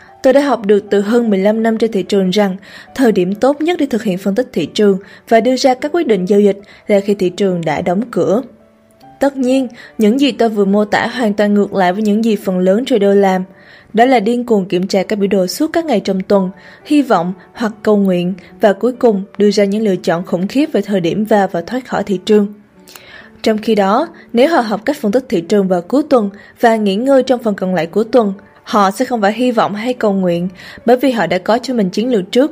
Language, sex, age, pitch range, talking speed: Vietnamese, female, 20-39, 195-240 Hz, 255 wpm